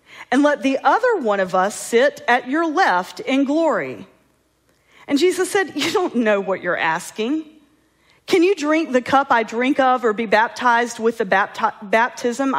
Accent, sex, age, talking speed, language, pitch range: American, female, 40-59, 170 wpm, English, 205-290 Hz